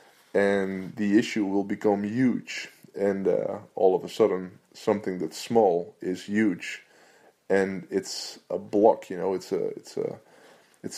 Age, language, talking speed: 20-39, English, 155 wpm